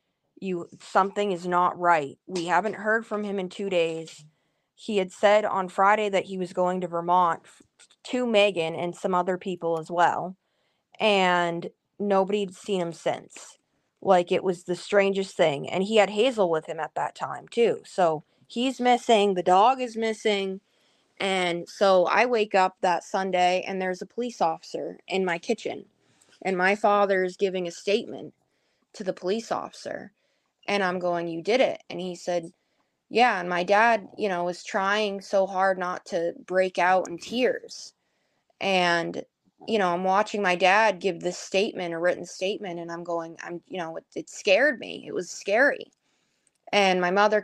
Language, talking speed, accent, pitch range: English, 180 wpm, American, 180-205 Hz